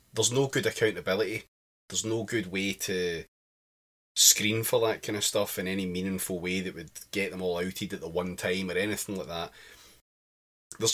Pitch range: 75-105 Hz